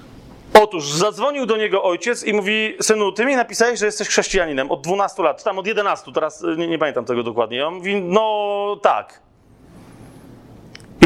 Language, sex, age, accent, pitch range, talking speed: Polish, male, 30-49, native, 190-230 Hz, 175 wpm